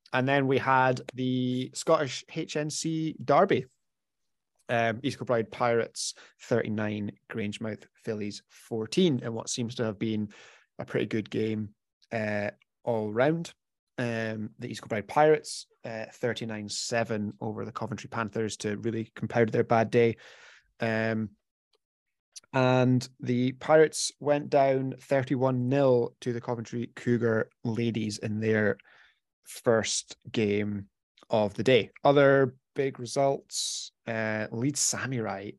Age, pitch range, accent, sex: 20-39, 110-130 Hz, British, male